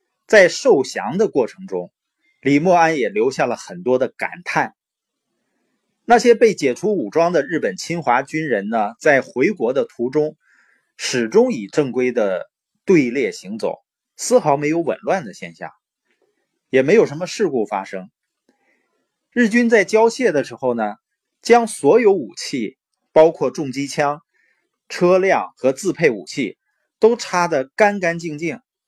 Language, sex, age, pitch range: Chinese, male, 20-39, 140-235 Hz